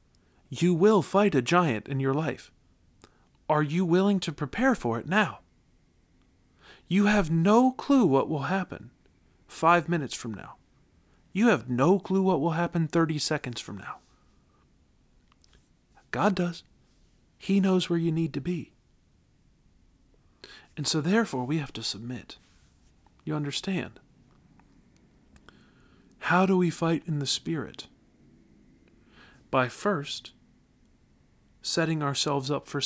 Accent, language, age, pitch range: American, English, 40-59, 135-190 Hz